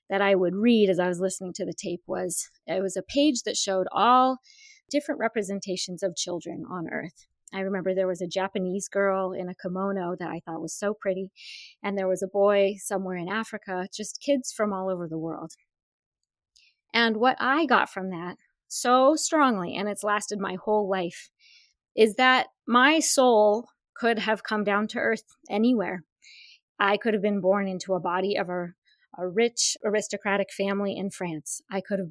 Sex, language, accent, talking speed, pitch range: female, English, American, 185 wpm, 190-230 Hz